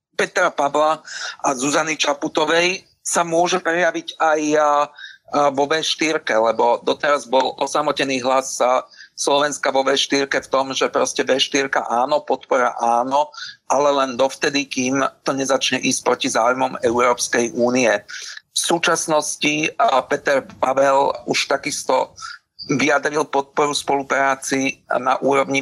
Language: Slovak